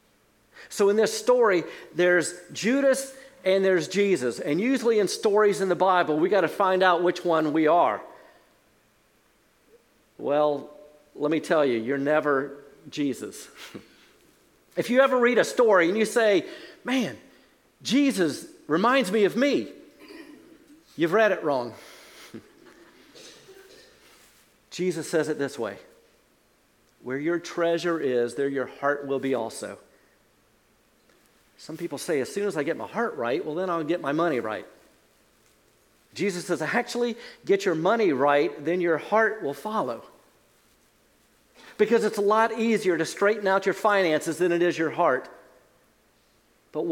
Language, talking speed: English, 145 wpm